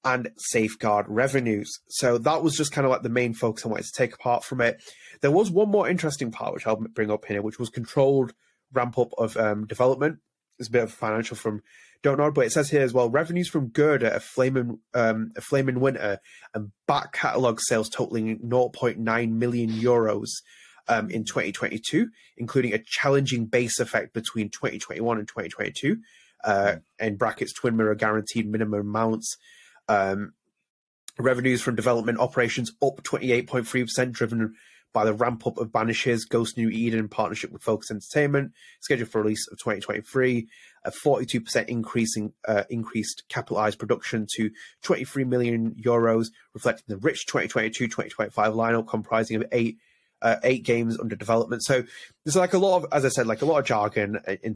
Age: 20-39